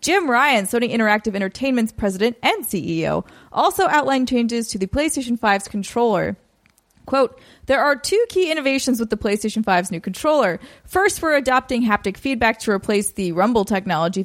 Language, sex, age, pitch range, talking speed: English, female, 30-49, 195-260 Hz, 160 wpm